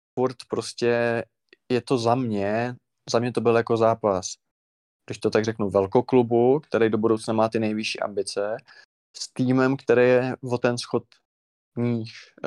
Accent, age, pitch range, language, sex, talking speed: native, 20-39, 110-125 Hz, Czech, male, 160 wpm